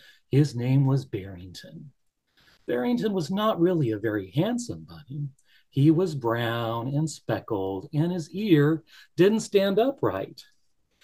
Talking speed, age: 125 wpm, 40-59